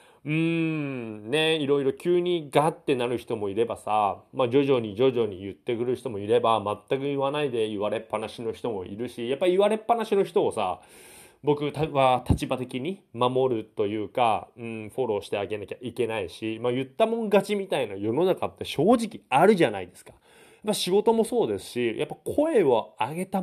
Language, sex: Japanese, male